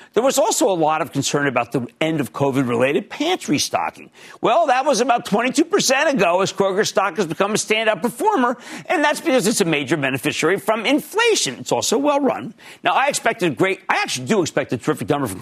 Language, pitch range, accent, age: English, 140-220 Hz, American, 50-69